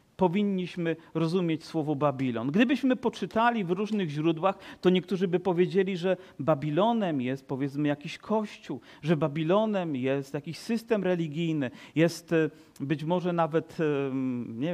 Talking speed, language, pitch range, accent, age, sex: 120 wpm, Polish, 155-195 Hz, native, 40-59, male